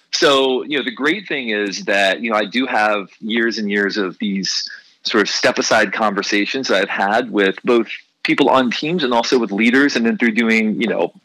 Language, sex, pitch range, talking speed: English, male, 115-190 Hz, 215 wpm